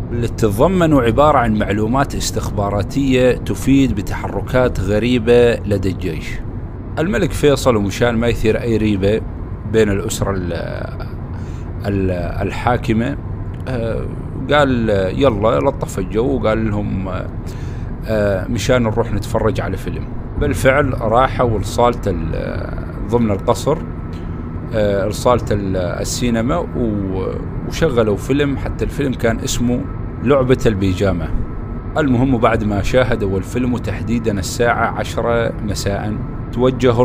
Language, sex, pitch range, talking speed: Arabic, male, 100-125 Hz, 90 wpm